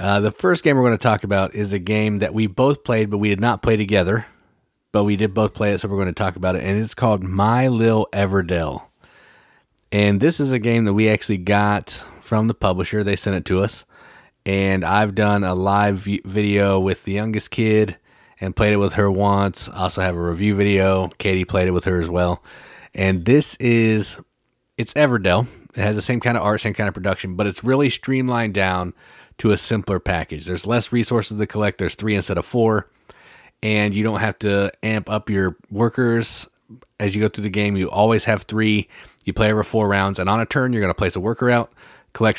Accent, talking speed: American, 225 wpm